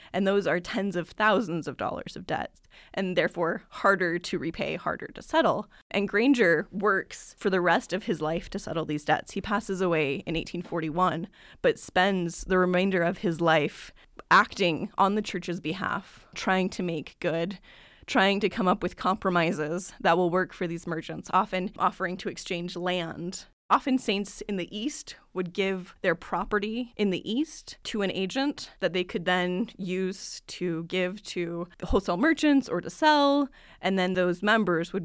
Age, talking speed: 20-39, 175 wpm